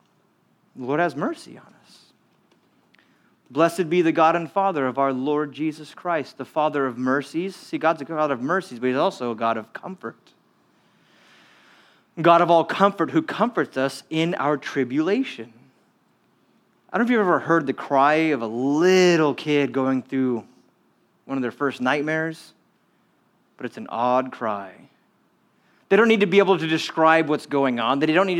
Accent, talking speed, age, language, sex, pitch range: American, 175 wpm, 30-49, English, male, 135-190 Hz